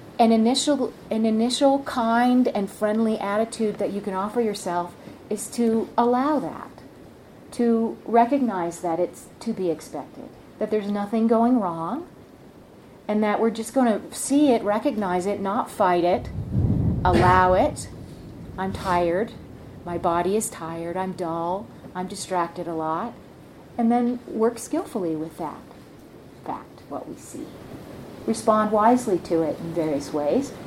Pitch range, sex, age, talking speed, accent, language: 175-230 Hz, female, 40-59, 145 wpm, American, English